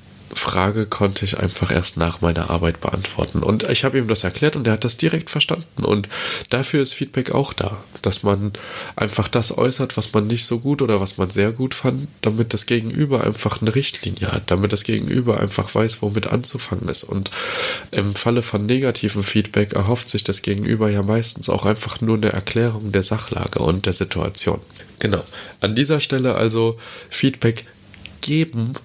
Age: 20-39